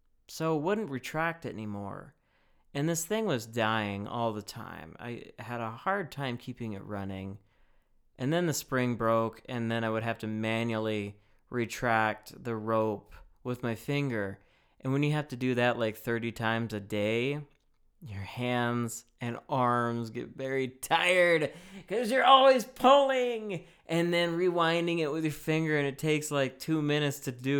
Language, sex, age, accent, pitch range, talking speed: English, male, 20-39, American, 110-145 Hz, 170 wpm